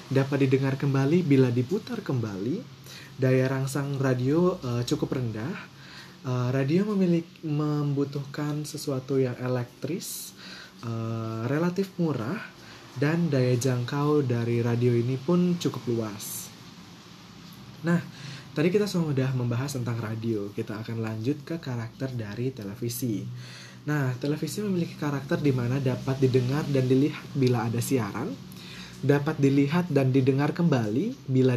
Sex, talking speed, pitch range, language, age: male, 120 wpm, 115-150 Hz, Indonesian, 20-39